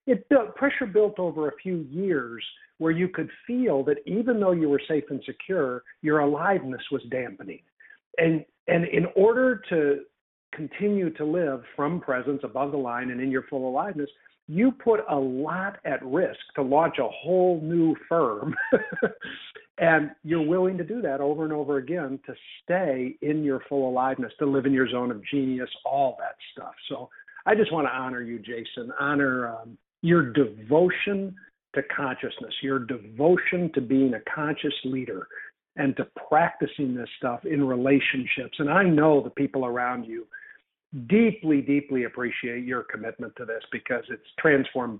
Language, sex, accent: English, male, American